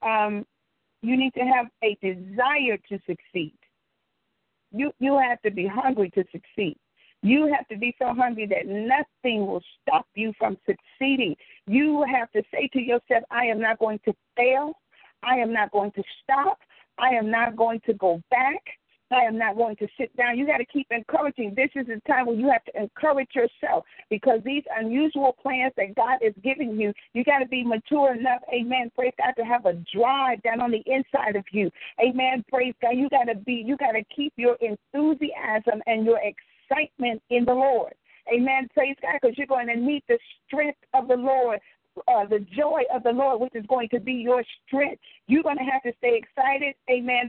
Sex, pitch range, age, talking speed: female, 230-275 Hz, 50-69, 195 wpm